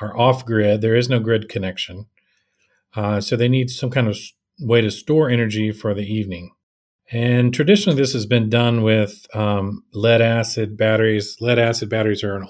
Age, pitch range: 40-59, 105-125 Hz